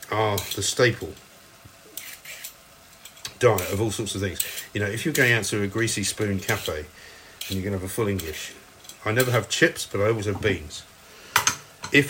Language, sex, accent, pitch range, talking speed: English, male, British, 100-130 Hz, 190 wpm